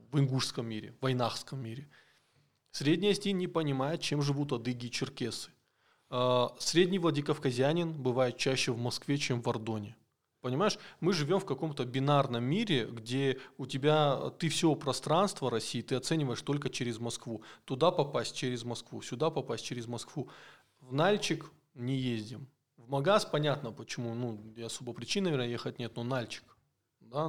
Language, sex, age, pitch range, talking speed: Russian, male, 20-39, 120-150 Hz, 150 wpm